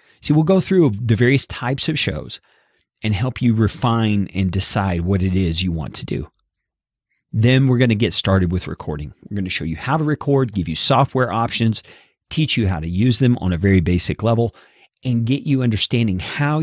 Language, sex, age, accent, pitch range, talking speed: English, male, 40-59, American, 95-125 Hz, 210 wpm